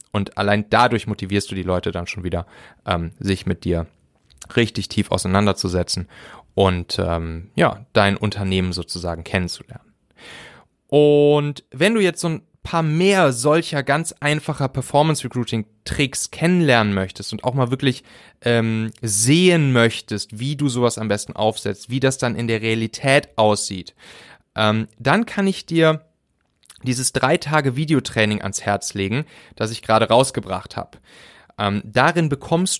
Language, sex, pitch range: German, male, 105-155 Hz